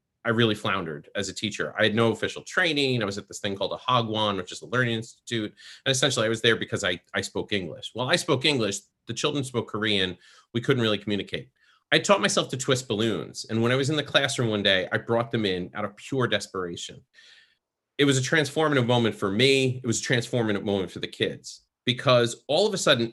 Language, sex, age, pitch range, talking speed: English, male, 30-49, 105-140 Hz, 230 wpm